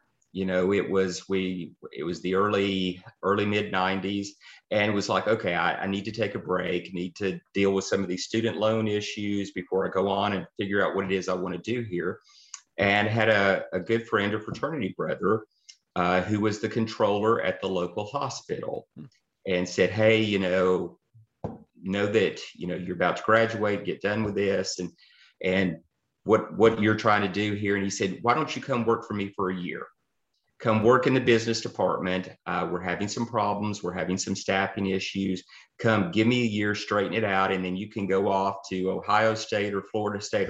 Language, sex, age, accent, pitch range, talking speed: English, male, 30-49, American, 95-110 Hz, 210 wpm